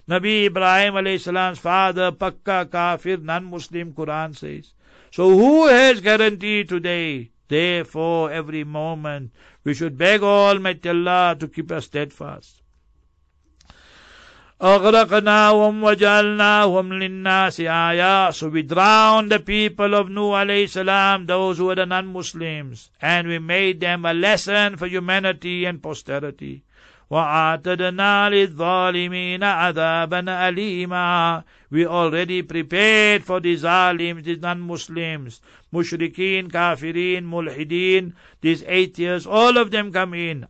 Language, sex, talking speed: English, male, 110 wpm